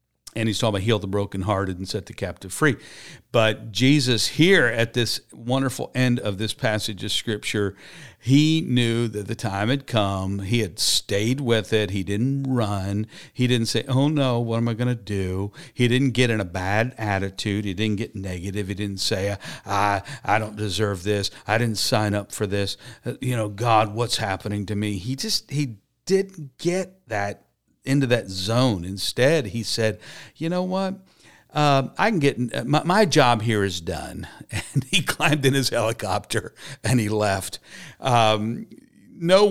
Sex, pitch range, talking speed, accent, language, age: male, 105-130 Hz, 180 wpm, American, English, 50-69